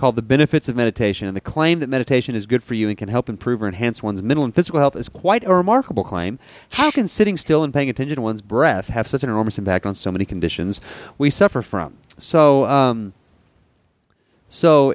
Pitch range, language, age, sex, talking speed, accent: 100-125 Hz, English, 30-49, male, 220 wpm, American